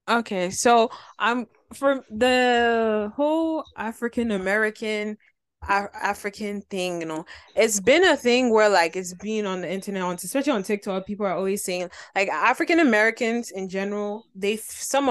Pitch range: 185-220 Hz